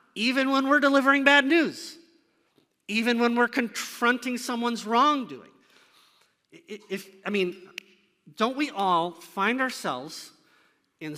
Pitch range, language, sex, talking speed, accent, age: 185-250 Hz, English, male, 105 wpm, American, 40-59